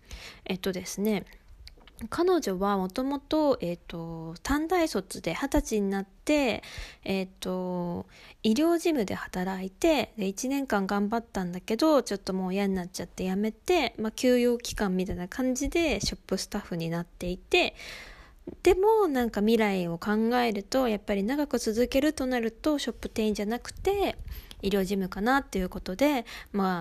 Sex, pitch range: female, 185-250 Hz